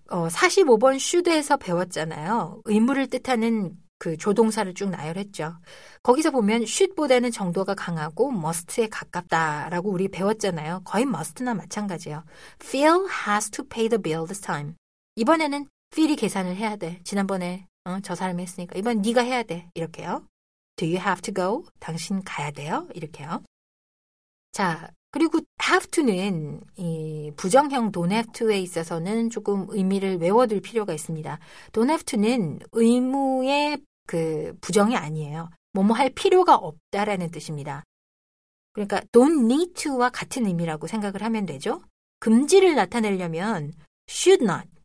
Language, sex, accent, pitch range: Korean, female, native, 170-245 Hz